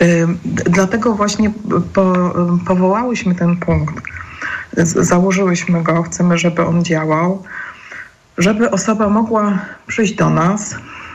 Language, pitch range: Polish, 160-190 Hz